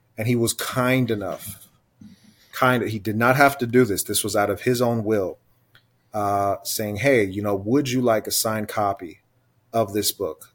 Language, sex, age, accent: English, male, 30-49, American